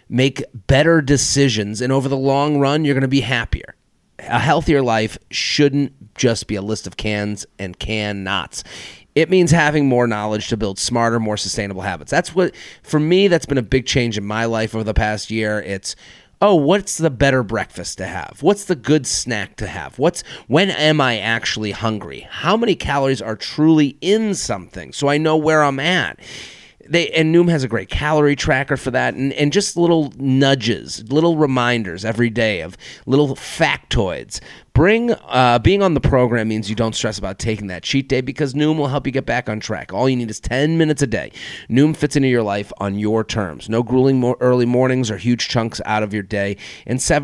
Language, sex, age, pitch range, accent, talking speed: English, male, 30-49, 110-145 Hz, American, 205 wpm